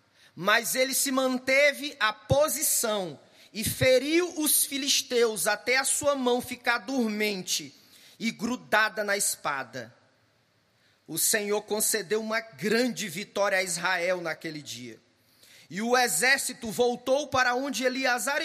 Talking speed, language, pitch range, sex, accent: 120 wpm, Portuguese, 170-255 Hz, male, Brazilian